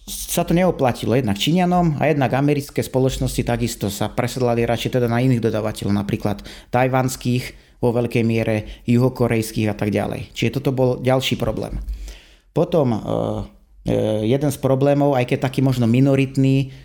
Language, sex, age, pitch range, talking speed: Slovak, male, 30-49, 110-130 Hz, 145 wpm